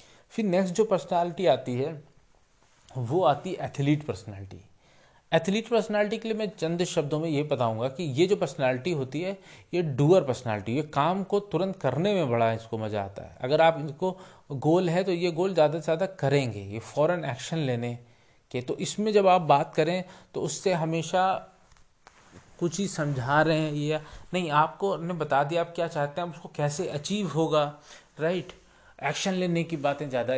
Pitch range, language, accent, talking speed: 130-175 Hz, Hindi, native, 180 wpm